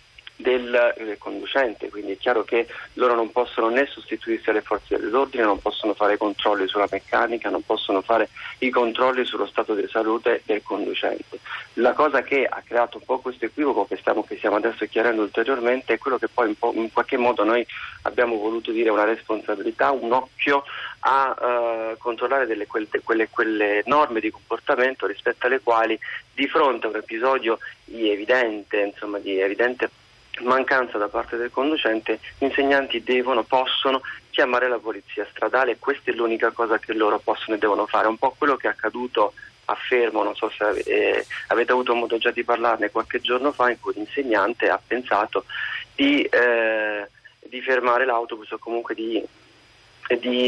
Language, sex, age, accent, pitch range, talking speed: Italian, male, 40-59, native, 110-130 Hz, 175 wpm